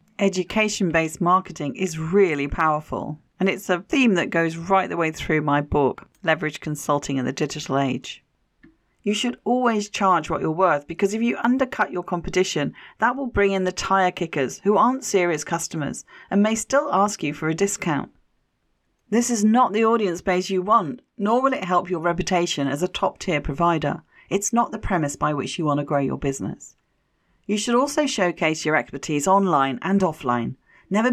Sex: female